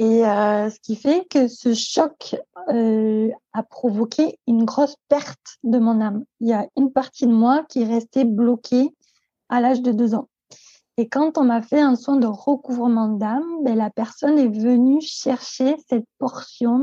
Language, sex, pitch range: French, female, 230-275 Hz